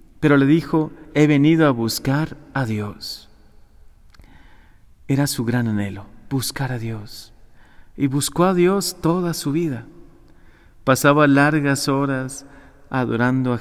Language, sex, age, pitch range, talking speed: Spanish, male, 40-59, 100-135 Hz, 125 wpm